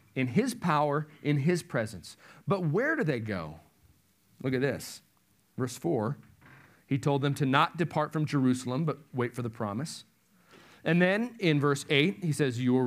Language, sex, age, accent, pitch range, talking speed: English, male, 40-59, American, 125-175 Hz, 175 wpm